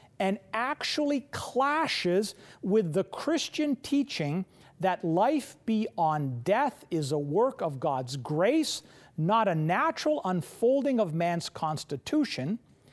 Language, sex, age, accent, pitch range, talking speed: English, male, 40-59, American, 165-260 Hz, 110 wpm